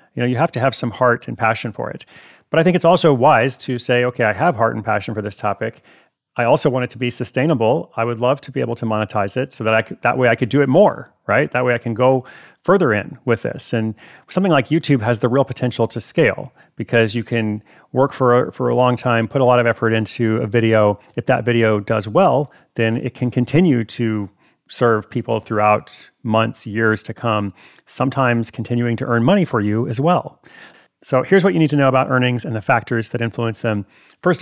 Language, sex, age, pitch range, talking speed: English, male, 30-49, 110-130 Hz, 235 wpm